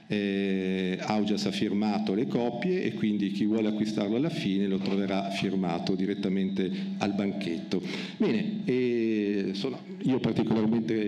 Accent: native